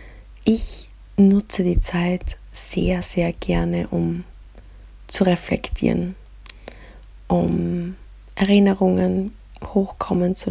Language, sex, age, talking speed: German, female, 20-39, 80 wpm